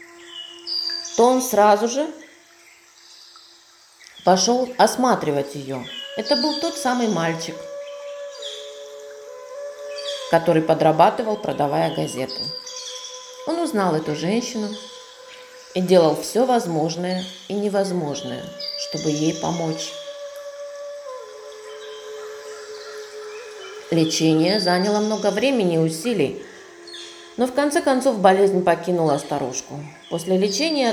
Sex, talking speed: female, 85 wpm